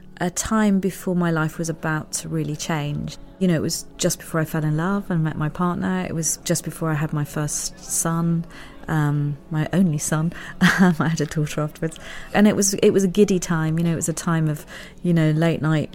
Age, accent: 30-49, British